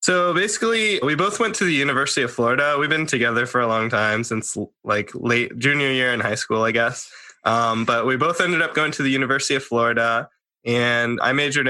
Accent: American